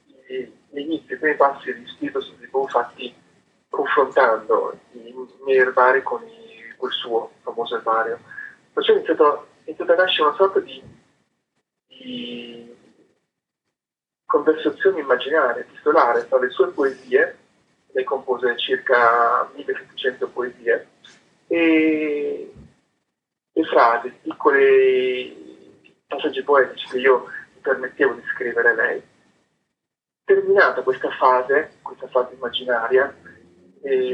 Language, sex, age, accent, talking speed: Italian, male, 30-49, native, 110 wpm